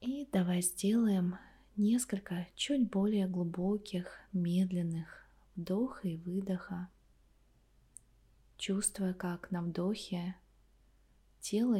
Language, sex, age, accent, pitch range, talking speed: Russian, female, 20-39, native, 170-195 Hz, 80 wpm